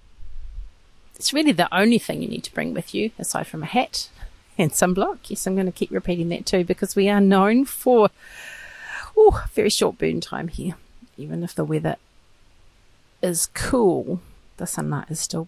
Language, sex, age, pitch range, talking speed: English, female, 40-59, 165-210 Hz, 180 wpm